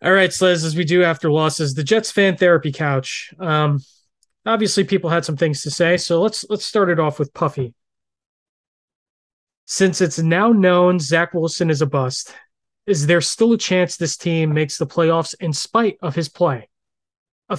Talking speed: 190 wpm